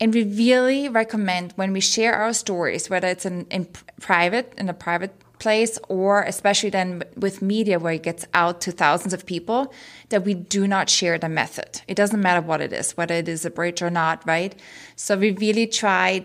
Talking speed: 205 wpm